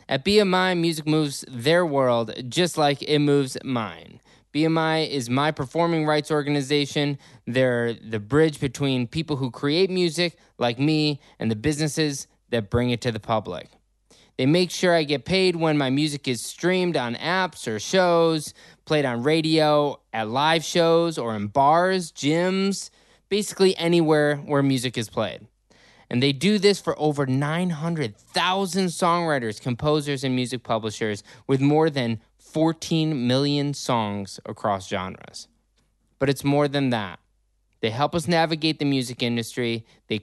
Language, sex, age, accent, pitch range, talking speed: English, male, 20-39, American, 120-160 Hz, 150 wpm